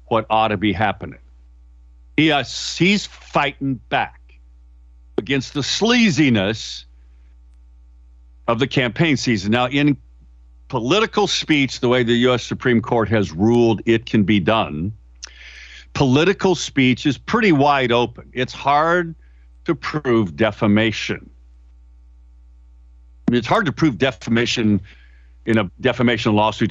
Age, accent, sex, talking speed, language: 50-69, American, male, 120 wpm, English